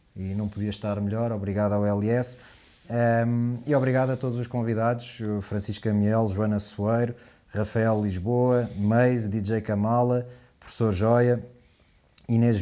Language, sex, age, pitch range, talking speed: Portuguese, male, 20-39, 105-115 Hz, 130 wpm